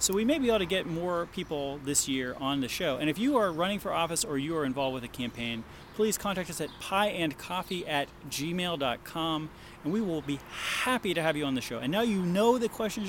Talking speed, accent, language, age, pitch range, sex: 240 wpm, American, English, 30-49, 140-195 Hz, male